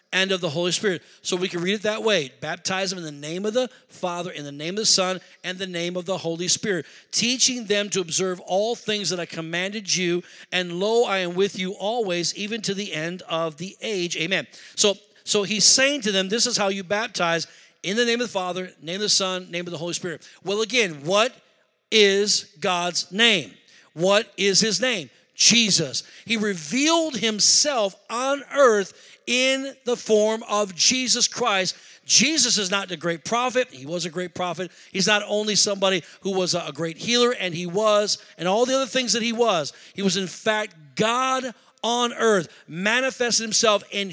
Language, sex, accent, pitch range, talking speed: English, male, American, 180-230 Hz, 200 wpm